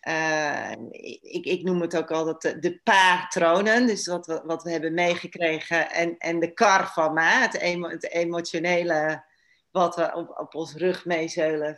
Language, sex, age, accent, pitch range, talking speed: Dutch, female, 40-59, Dutch, 160-190 Hz, 165 wpm